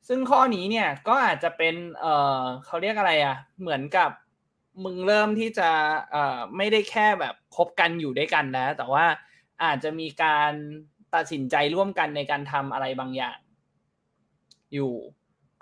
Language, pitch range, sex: Thai, 135-170 Hz, male